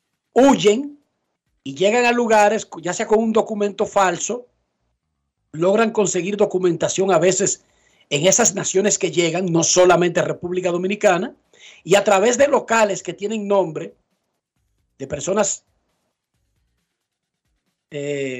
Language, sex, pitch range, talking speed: Spanish, male, 155-215 Hz, 115 wpm